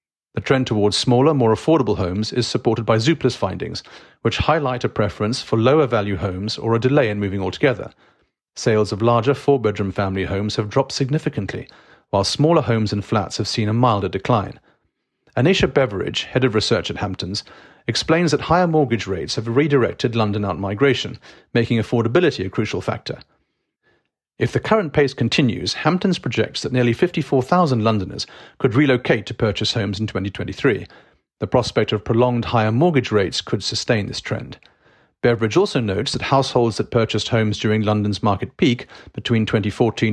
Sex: male